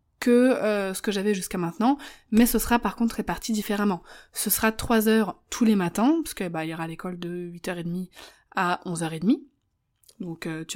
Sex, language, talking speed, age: female, French, 195 wpm, 20-39